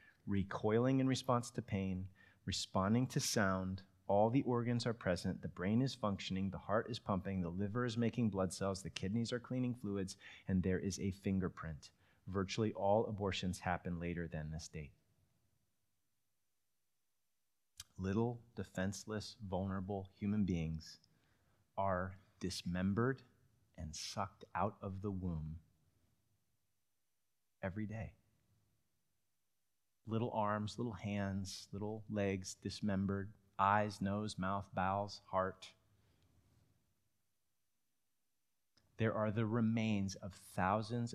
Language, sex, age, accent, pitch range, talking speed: English, male, 30-49, American, 95-110 Hz, 115 wpm